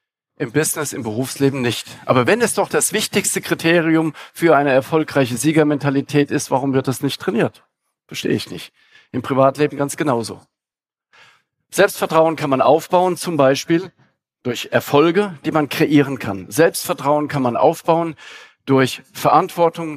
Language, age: German, 50-69